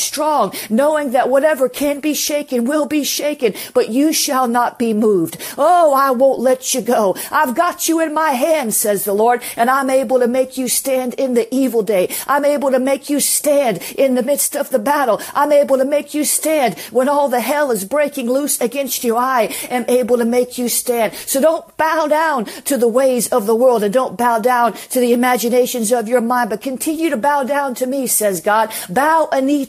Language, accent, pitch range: English, American, 245-290 Hz